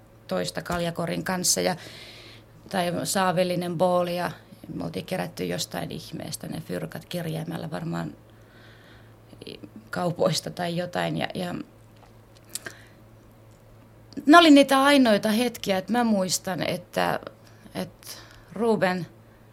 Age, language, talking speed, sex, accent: 20-39, Finnish, 95 wpm, female, native